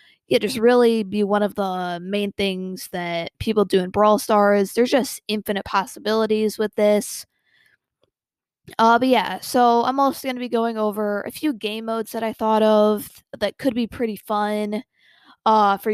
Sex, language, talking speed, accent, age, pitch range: female, English, 175 wpm, American, 20-39, 205-235 Hz